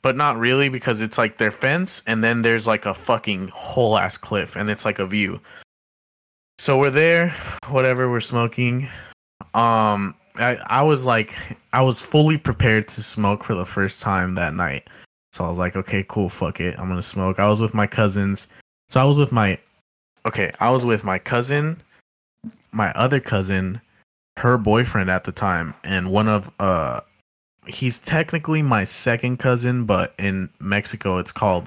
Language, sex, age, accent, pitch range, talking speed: English, male, 20-39, American, 100-125 Hz, 175 wpm